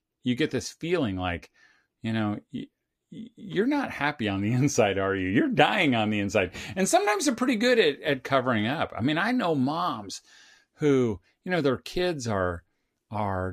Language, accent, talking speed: English, American, 185 wpm